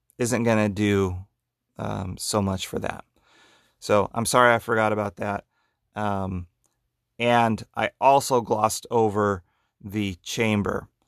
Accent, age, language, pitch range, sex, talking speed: American, 30-49, English, 100-120 Hz, male, 125 wpm